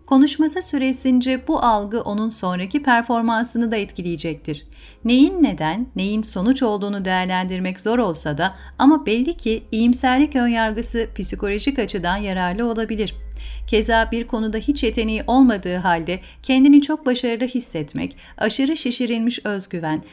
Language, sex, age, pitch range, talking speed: Turkish, female, 40-59, 180-245 Hz, 120 wpm